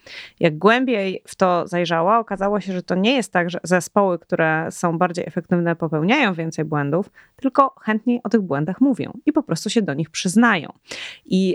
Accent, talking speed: native, 180 wpm